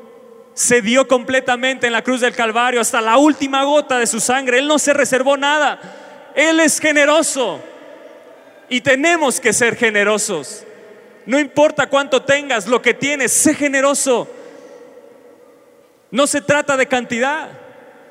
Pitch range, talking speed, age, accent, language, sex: 255-305 Hz, 140 wpm, 30-49, Mexican, Spanish, male